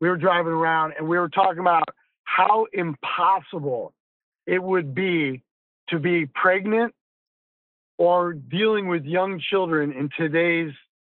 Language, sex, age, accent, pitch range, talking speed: English, male, 50-69, American, 150-180 Hz, 130 wpm